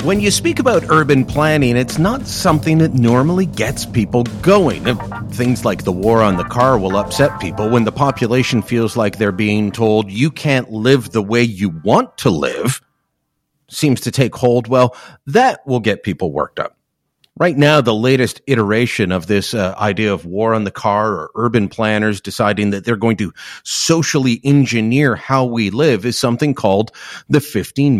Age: 40-59